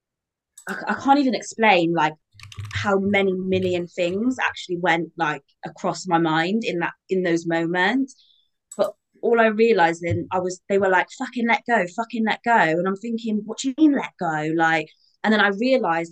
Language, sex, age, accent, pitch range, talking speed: English, female, 20-39, British, 170-215 Hz, 185 wpm